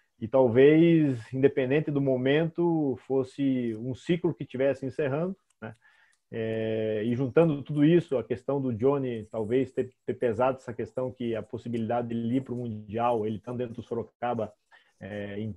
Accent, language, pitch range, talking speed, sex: Brazilian, Portuguese, 120-145 Hz, 160 wpm, male